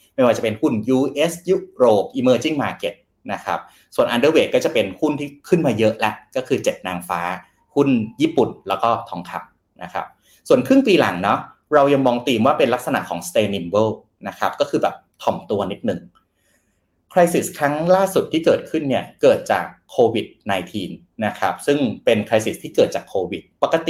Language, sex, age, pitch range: Thai, male, 30-49, 110-175 Hz